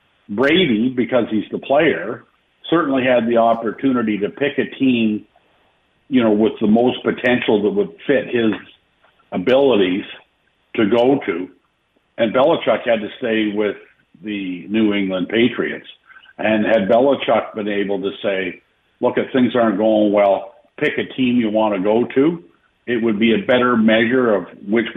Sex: male